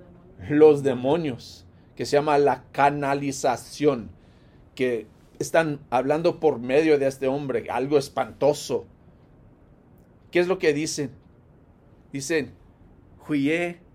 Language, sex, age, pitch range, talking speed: Spanish, male, 40-59, 90-145 Hz, 105 wpm